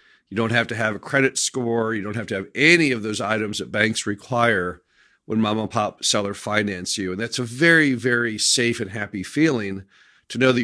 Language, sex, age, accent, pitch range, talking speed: English, male, 50-69, American, 105-135 Hz, 220 wpm